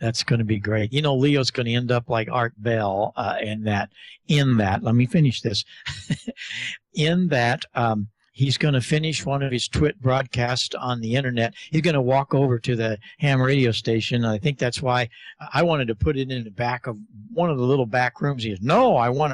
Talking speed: 225 wpm